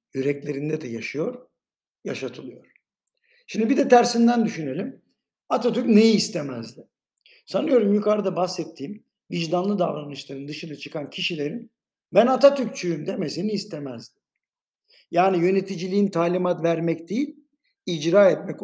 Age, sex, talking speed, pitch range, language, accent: 60-79, male, 100 wpm, 150-215 Hz, Turkish, native